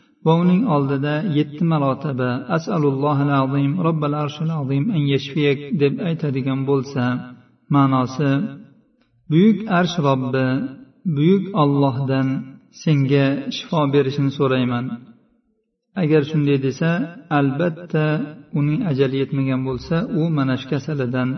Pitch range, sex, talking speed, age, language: 130-150 Hz, male, 105 wpm, 50-69, Bulgarian